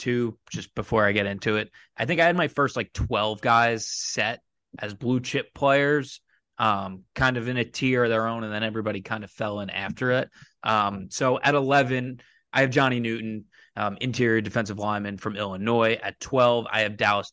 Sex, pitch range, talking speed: male, 105-125 Hz, 200 wpm